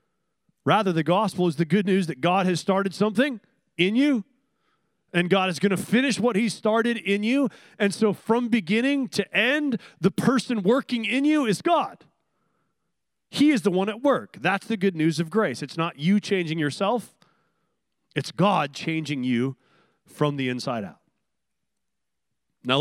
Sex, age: male, 30-49